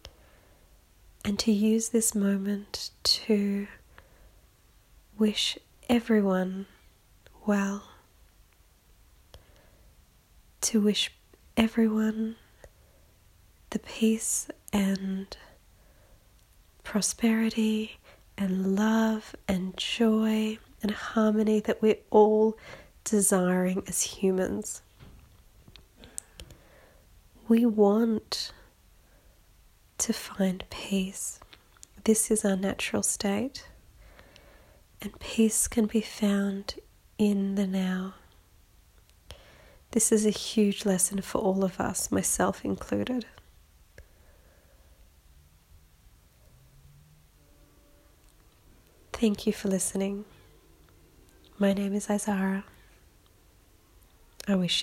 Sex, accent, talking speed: female, Australian, 75 wpm